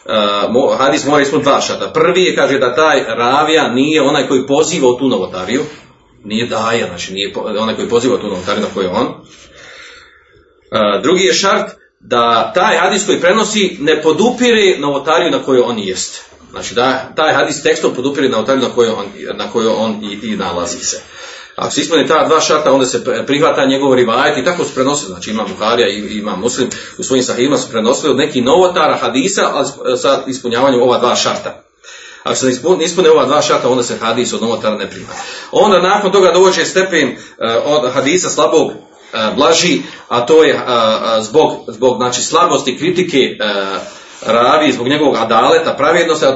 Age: 40-59